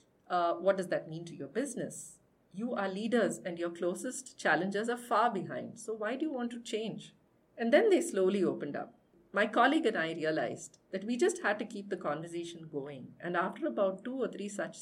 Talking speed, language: 210 wpm, English